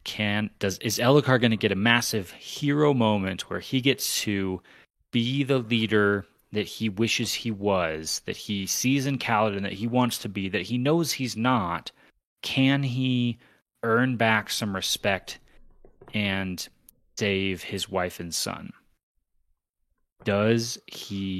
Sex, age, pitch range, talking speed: male, 30-49, 100-130 Hz, 145 wpm